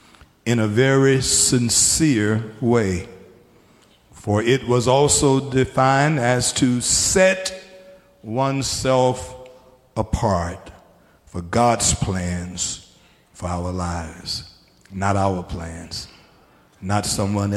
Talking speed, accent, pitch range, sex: 90 wpm, American, 95-140 Hz, male